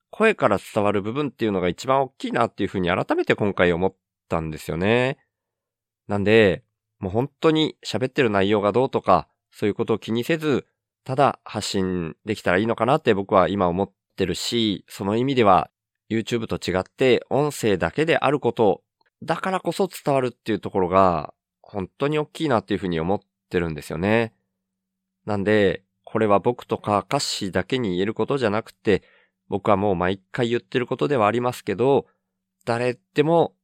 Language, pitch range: Japanese, 95-125 Hz